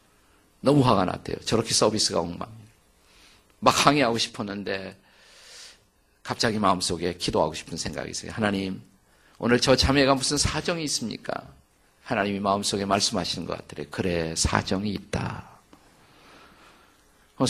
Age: 50-69